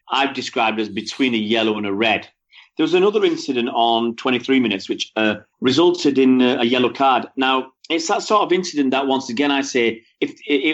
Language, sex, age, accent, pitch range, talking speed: English, male, 40-59, British, 115-155 Hz, 200 wpm